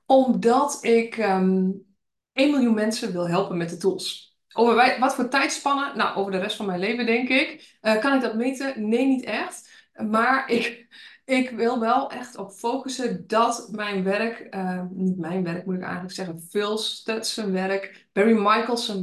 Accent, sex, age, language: Dutch, female, 20-39, Dutch